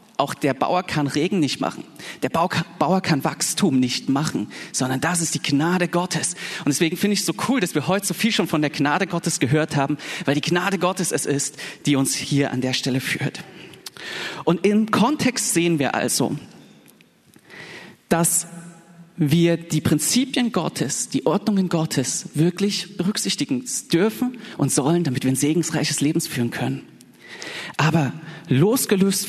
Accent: German